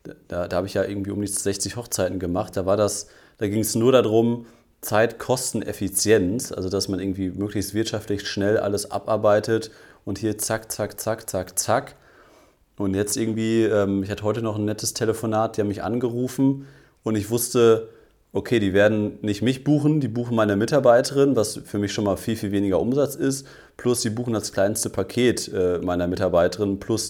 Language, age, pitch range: German, 30-49, 100-115 Hz